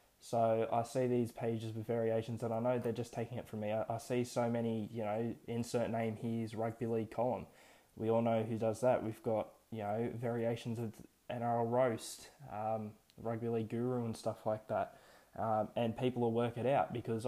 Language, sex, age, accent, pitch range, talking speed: English, male, 20-39, Australian, 110-120 Hz, 205 wpm